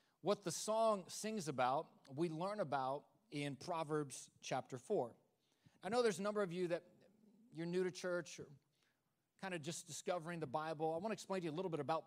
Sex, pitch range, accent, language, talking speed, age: male, 145-190 Hz, American, English, 205 wpm, 30-49